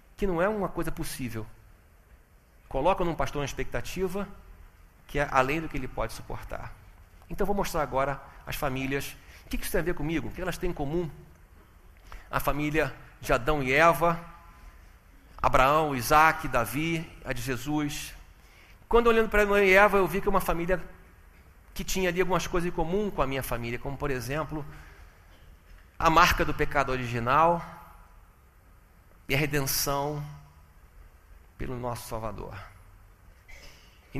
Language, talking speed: Portuguese, 155 wpm